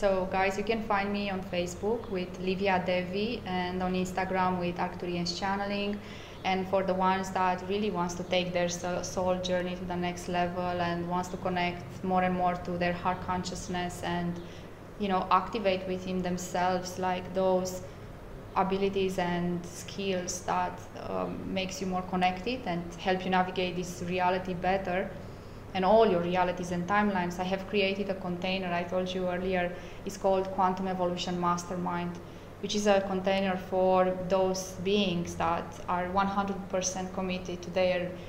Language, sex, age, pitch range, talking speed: English, female, 20-39, 180-190 Hz, 160 wpm